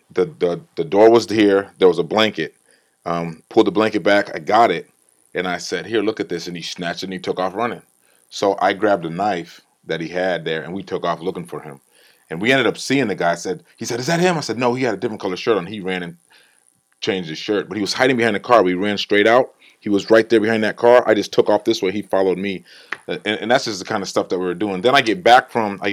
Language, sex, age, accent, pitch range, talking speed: English, male, 30-49, American, 85-105 Hz, 290 wpm